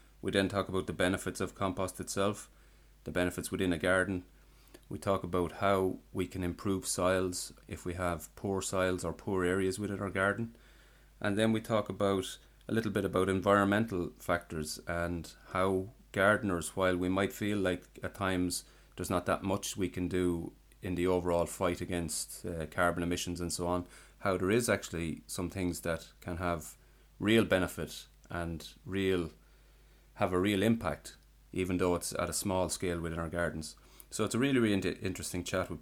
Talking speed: 180 wpm